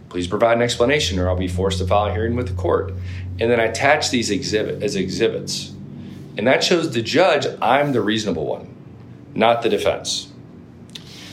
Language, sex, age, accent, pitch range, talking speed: English, male, 40-59, American, 90-115 Hz, 185 wpm